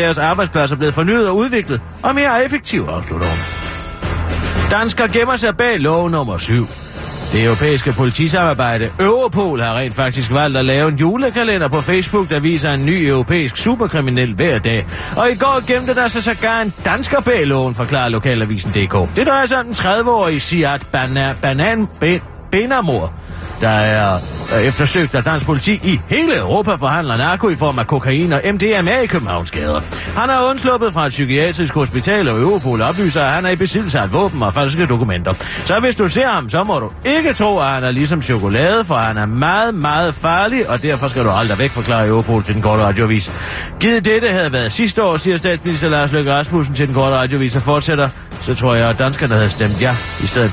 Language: Danish